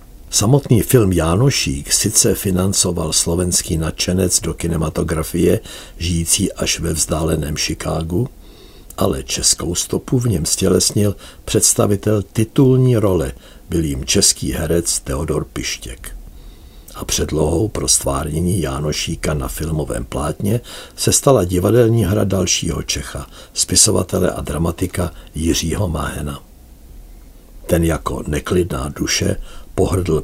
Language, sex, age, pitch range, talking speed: Czech, male, 60-79, 75-100 Hz, 105 wpm